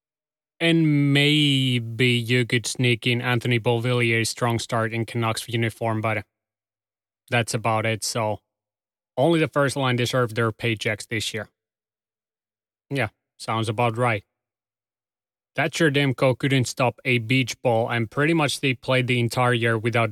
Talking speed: 140 wpm